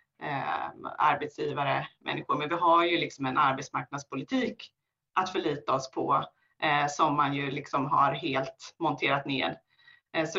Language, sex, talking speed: Swedish, female, 145 wpm